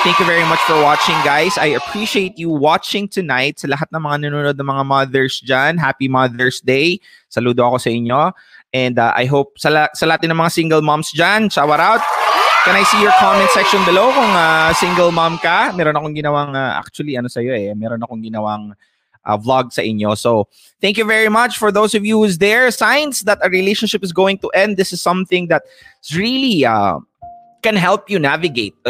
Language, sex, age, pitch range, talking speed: English, male, 20-39, 140-185 Hz, 195 wpm